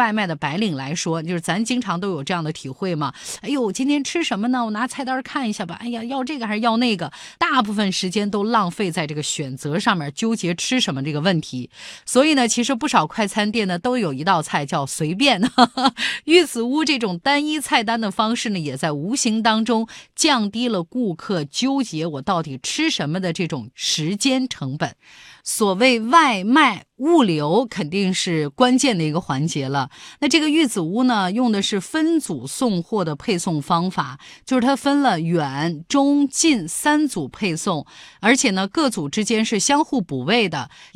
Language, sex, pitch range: Chinese, female, 175-260 Hz